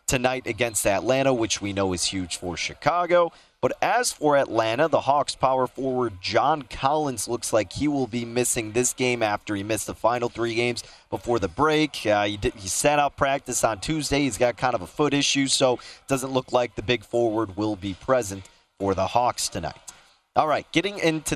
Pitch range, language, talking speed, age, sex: 110-135 Hz, English, 200 wpm, 30-49, male